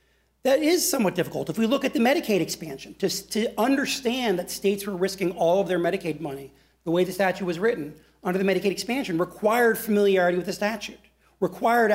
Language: English